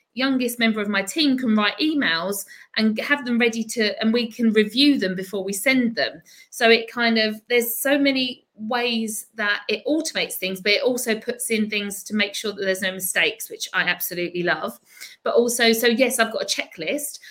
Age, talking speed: 50-69, 205 wpm